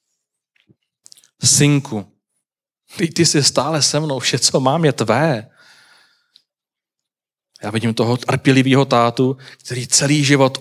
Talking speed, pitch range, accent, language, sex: 105 wpm, 115-140 Hz, native, Czech, male